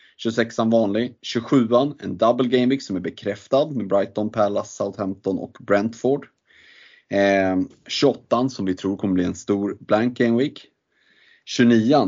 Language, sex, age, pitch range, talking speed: Swedish, male, 30-49, 95-120 Hz, 145 wpm